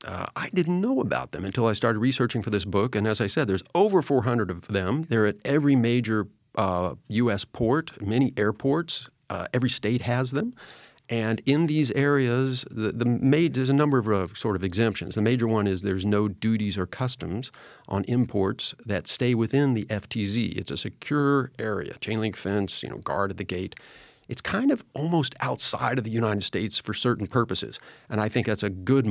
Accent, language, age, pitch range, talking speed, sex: American, English, 40-59, 105-135 Hz, 200 wpm, male